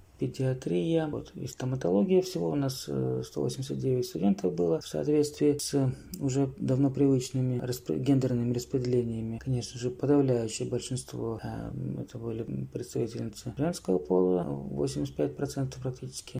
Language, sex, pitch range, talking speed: Russian, male, 120-140 Hz, 115 wpm